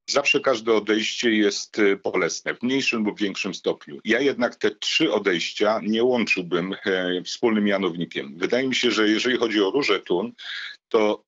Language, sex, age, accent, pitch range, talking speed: Polish, male, 40-59, native, 95-120 Hz, 155 wpm